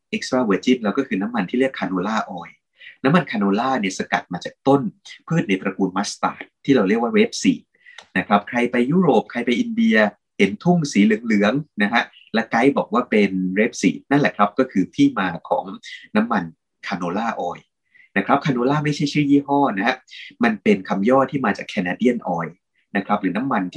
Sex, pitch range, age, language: male, 100-145 Hz, 20-39, Thai